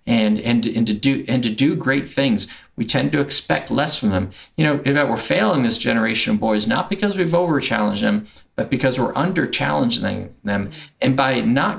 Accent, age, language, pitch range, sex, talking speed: American, 50-69, English, 110-160 Hz, male, 205 wpm